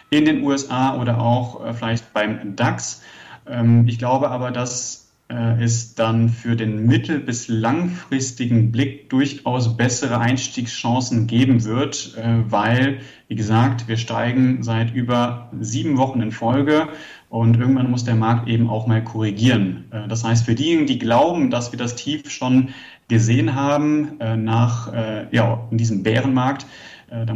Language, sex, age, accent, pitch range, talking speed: German, male, 30-49, German, 110-130 Hz, 135 wpm